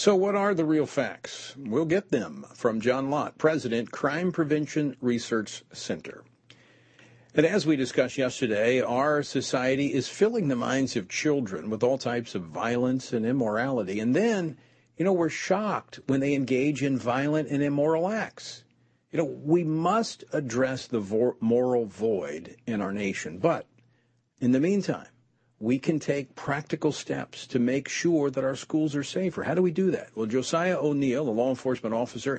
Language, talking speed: English, 170 wpm